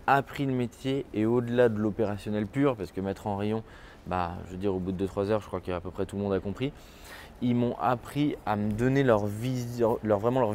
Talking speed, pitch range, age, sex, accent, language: 245 wpm, 105-135 Hz, 20-39, male, French, French